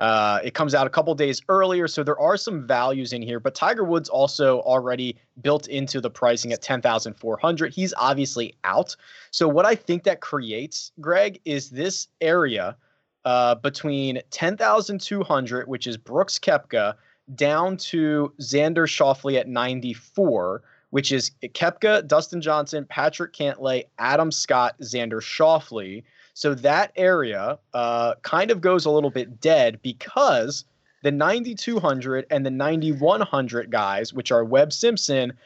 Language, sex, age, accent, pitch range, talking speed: English, male, 20-39, American, 125-165 Hz, 145 wpm